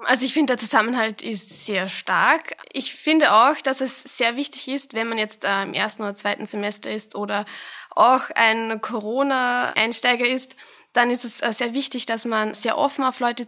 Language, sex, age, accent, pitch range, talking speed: German, female, 20-39, German, 215-255 Hz, 185 wpm